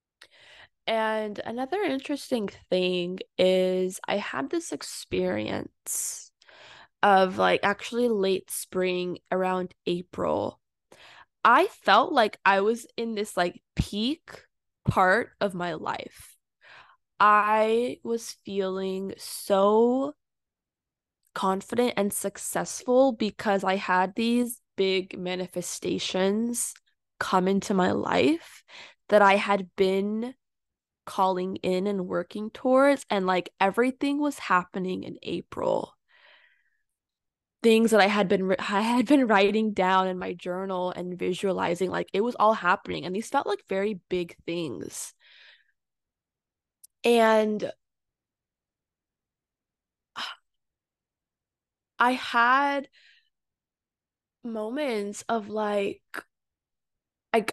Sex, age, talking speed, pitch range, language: female, 10-29, 100 wpm, 185-235 Hz, English